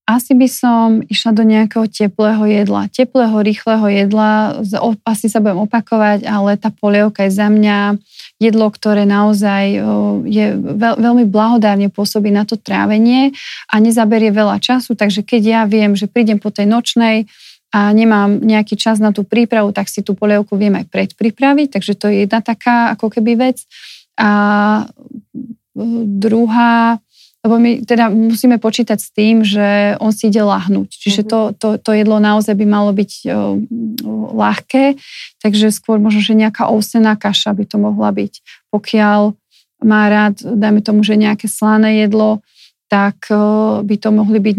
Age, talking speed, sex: 30-49, 155 wpm, female